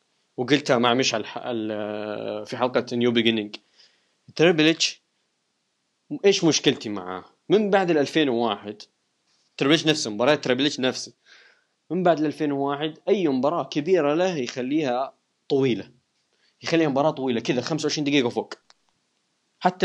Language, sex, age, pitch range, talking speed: Arabic, male, 20-39, 120-160 Hz, 115 wpm